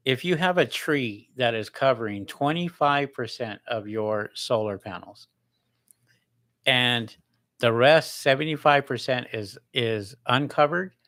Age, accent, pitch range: 50-69, American, 110-130 Hz